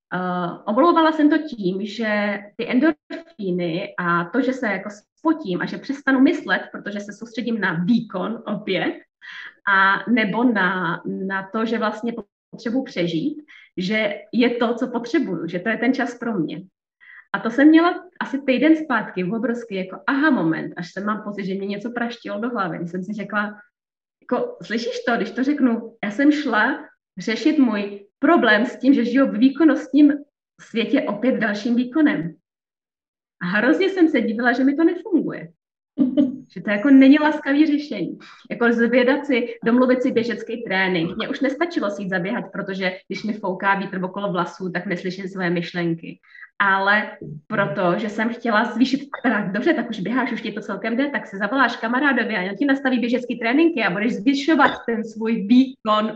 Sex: female